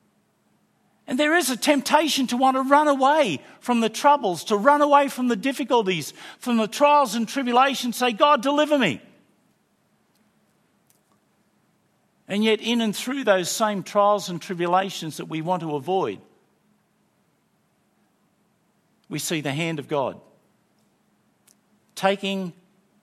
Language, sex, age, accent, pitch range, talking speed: English, male, 50-69, Australian, 155-215 Hz, 130 wpm